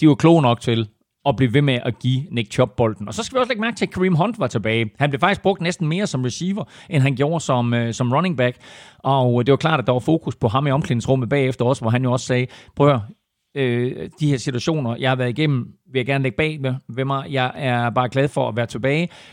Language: Danish